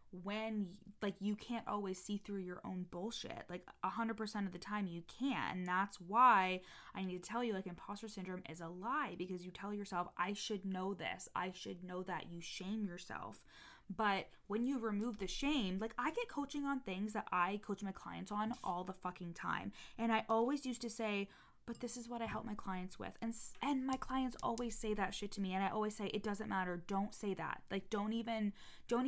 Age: 20-39